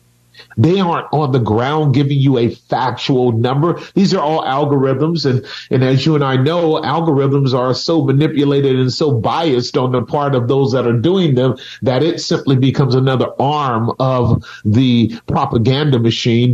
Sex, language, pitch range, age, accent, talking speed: male, English, 125-160 Hz, 50-69, American, 170 wpm